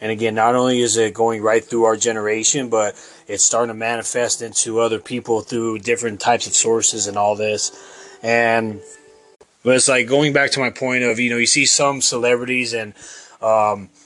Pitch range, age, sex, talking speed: 115-140 Hz, 20-39, male, 190 wpm